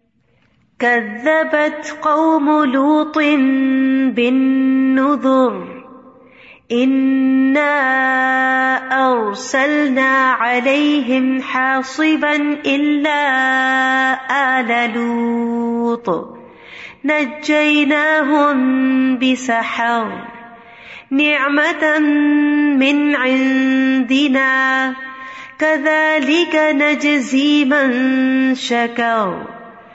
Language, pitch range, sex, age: Urdu, 260-295 Hz, female, 30-49